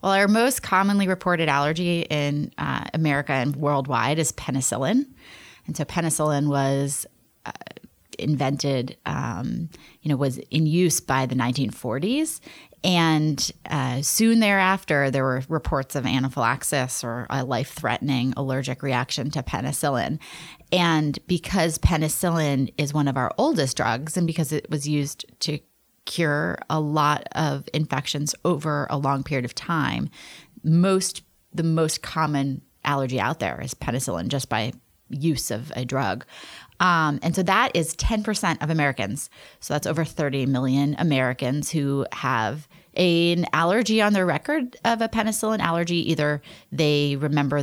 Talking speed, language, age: 145 wpm, English, 30-49